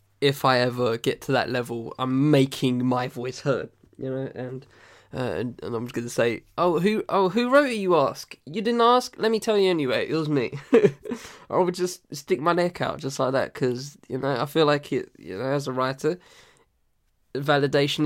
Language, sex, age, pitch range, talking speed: English, male, 10-29, 135-175 Hz, 215 wpm